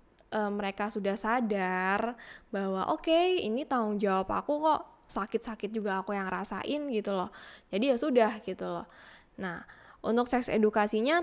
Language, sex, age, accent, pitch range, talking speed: Indonesian, female, 10-29, native, 205-255 Hz, 150 wpm